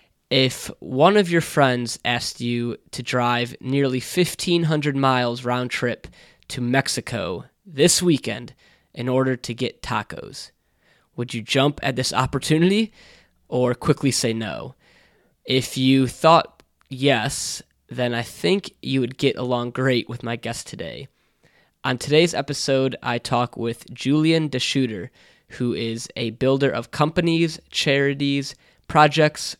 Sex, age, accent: male, 20-39, American